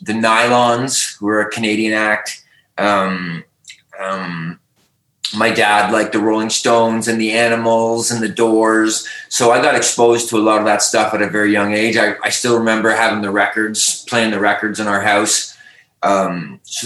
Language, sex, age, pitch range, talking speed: English, male, 20-39, 105-120 Hz, 180 wpm